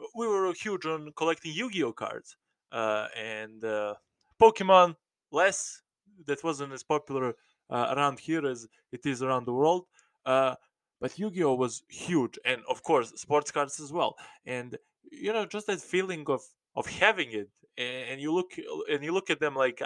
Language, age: English, 20-39